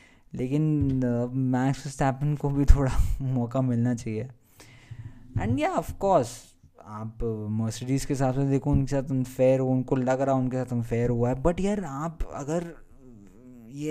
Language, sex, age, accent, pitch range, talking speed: Hindi, male, 20-39, native, 115-140 Hz, 150 wpm